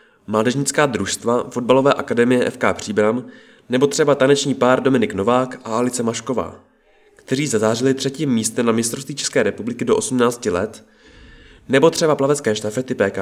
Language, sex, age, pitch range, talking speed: Czech, male, 20-39, 110-135 Hz, 140 wpm